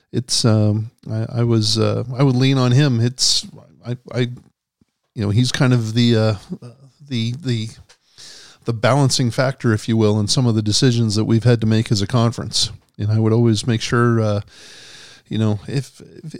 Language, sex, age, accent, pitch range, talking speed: English, male, 40-59, American, 110-130 Hz, 190 wpm